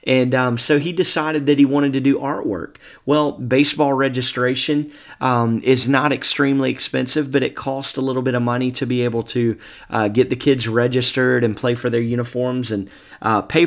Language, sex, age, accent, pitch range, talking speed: English, male, 30-49, American, 115-140 Hz, 195 wpm